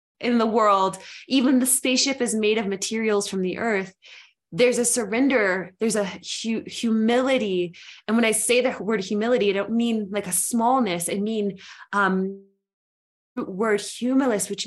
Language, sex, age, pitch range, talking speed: English, female, 20-39, 195-245 Hz, 155 wpm